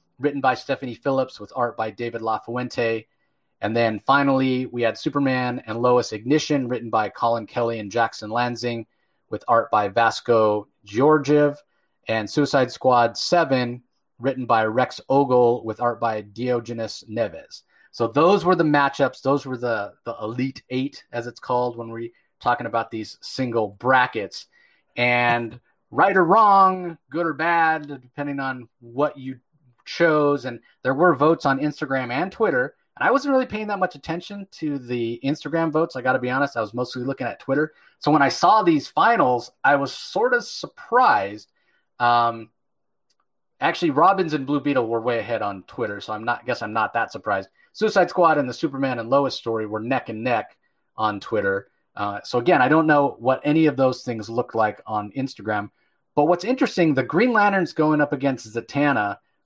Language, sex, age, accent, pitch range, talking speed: English, male, 30-49, American, 115-150 Hz, 180 wpm